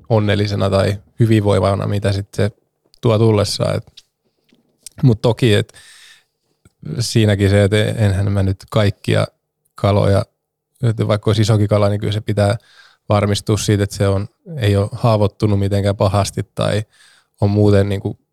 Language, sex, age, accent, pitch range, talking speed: Finnish, male, 20-39, native, 100-115 Hz, 130 wpm